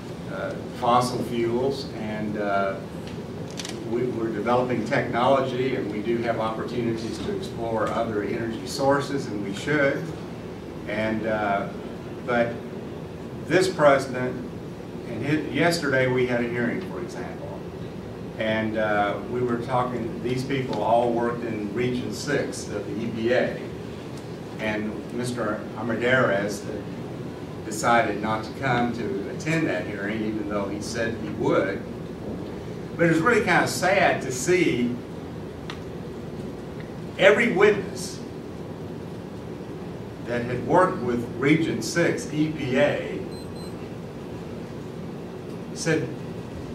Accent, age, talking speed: American, 50-69, 110 wpm